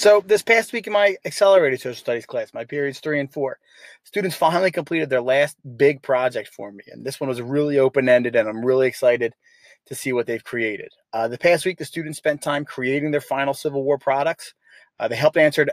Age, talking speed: 30-49, 220 wpm